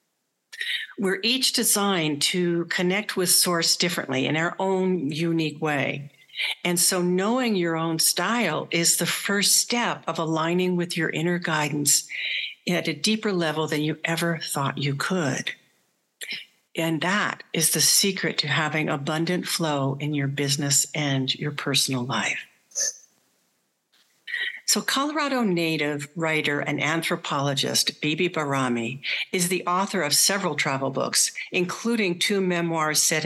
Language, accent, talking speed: English, American, 135 wpm